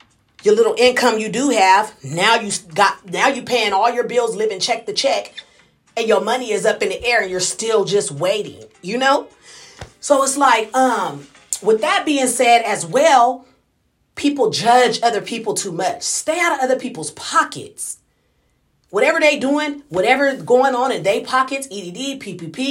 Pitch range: 240-300 Hz